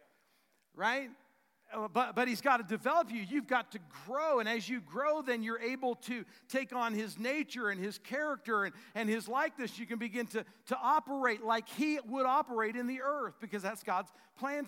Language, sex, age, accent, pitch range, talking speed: English, male, 50-69, American, 190-250 Hz, 195 wpm